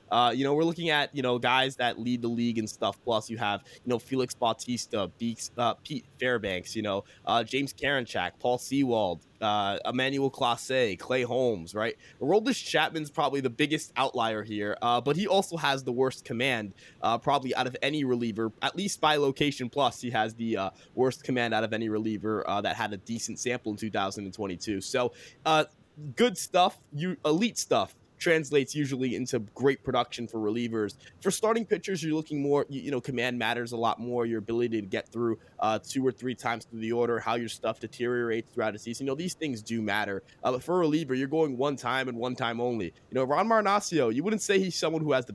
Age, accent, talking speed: 20-39, American, 215 wpm